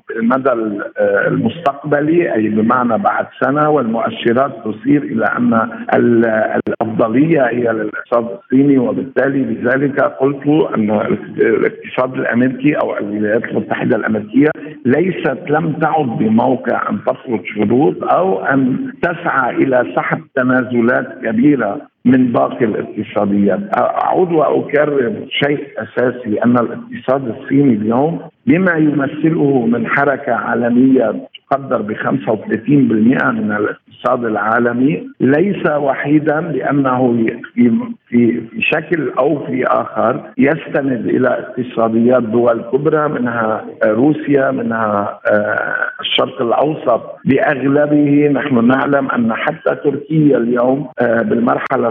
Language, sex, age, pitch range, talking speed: Arabic, male, 50-69, 120-150 Hz, 100 wpm